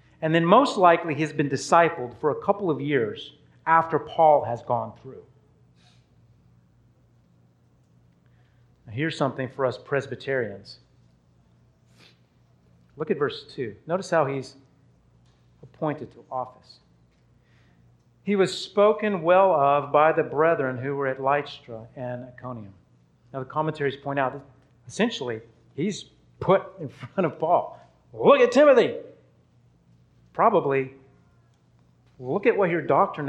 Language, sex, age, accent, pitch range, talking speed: English, male, 40-59, American, 120-160 Hz, 125 wpm